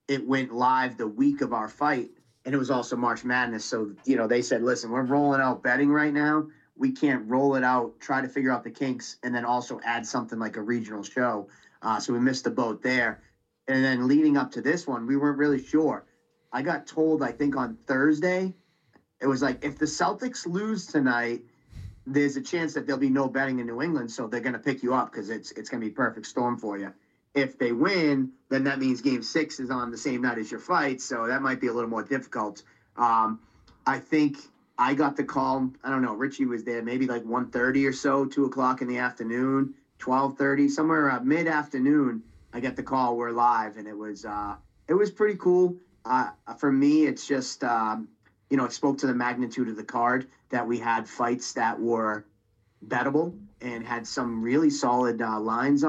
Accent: American